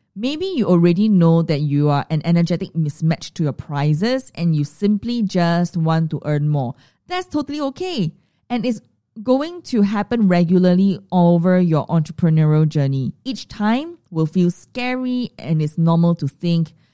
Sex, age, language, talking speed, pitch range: female, 20-39, English, 155 wpm, 160-235 Hz